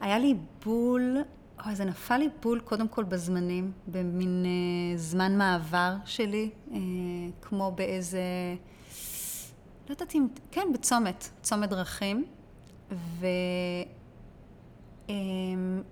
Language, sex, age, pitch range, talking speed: Hebrew, female, 30-49, 185-240 Hz, 100 wpm